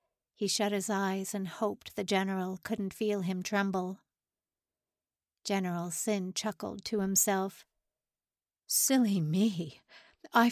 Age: 50-69